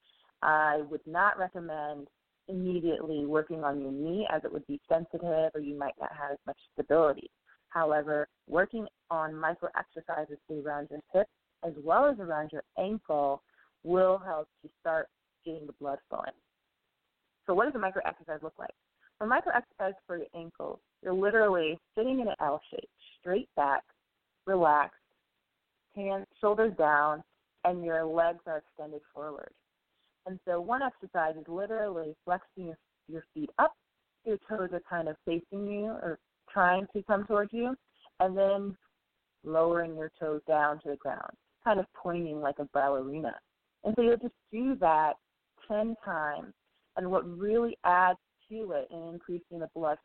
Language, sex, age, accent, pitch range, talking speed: English, female, 30-49, American, 155-195 Hz, 160 wpm